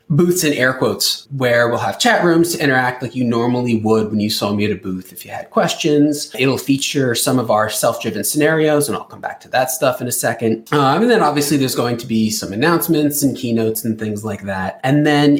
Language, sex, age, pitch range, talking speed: English, male, 30-49, 110-150 Hz, 240 wpm